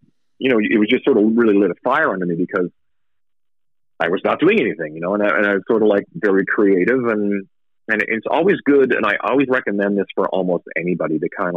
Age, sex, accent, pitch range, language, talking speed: 40-59, male, American, 85-130 Hz, English, 240 wpm